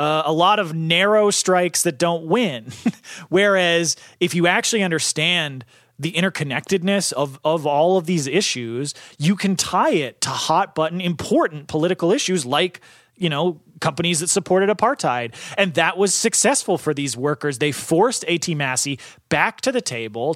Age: 30-49